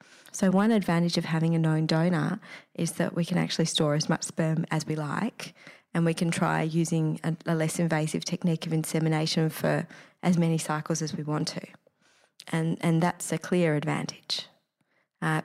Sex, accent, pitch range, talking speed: female, Australian, 155-180 Hz, 185 wpm